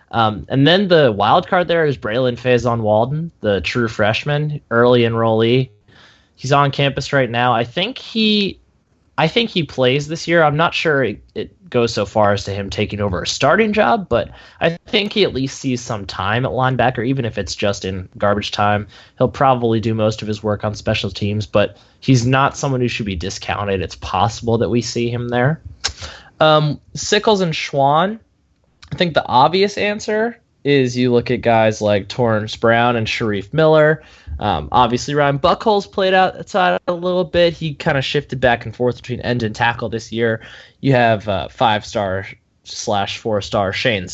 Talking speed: 190 wpm